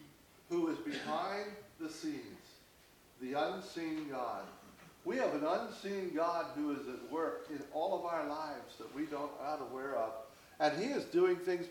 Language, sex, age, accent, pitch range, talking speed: English, male, 60-79, American, 125-165 Hz, 170 wpm